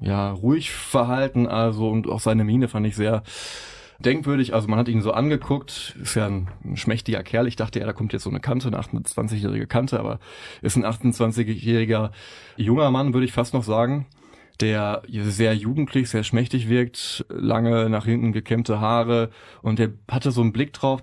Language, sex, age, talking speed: German, male, 20-39, 185 wpm